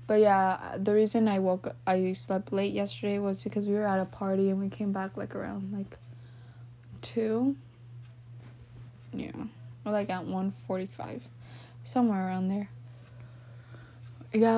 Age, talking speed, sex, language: 10-29, 145 wpm, female, English